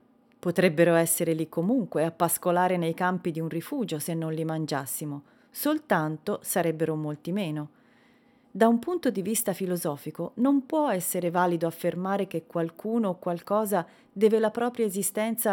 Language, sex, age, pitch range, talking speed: Italian, female, 30-49, 170-245 Hz, 145 wpm